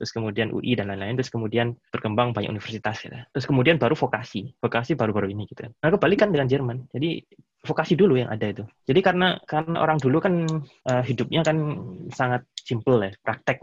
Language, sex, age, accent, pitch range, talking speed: Indonesian, male, 20-39, native, 110-140 Hz, 180 wpm